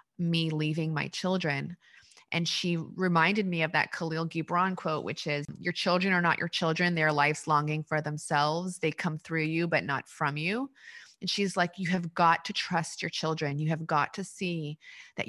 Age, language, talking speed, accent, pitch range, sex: 20-39, English, 195 wpm, American, 160-185 Hz, female